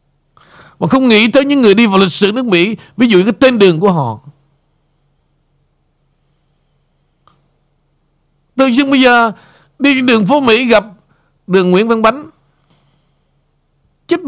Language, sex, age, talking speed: Vietnamese, male, 60-79, 145 wpm